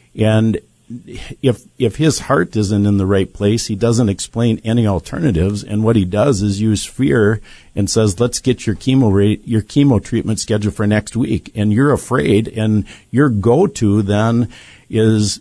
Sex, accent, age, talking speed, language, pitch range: male, American, 50-69, 170 wpm, English, 105-120 Hz